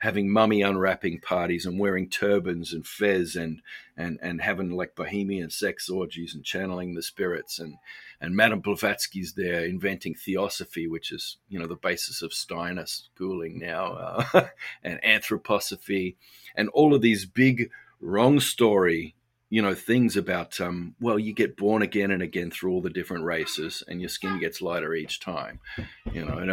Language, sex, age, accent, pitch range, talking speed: English, male, 50-69, Australian, 85-110 Hz, 170 wpm